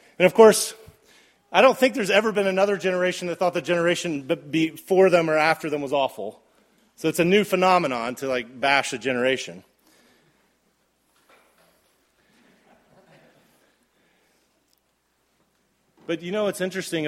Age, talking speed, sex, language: 30-49, 130 wpm, male, English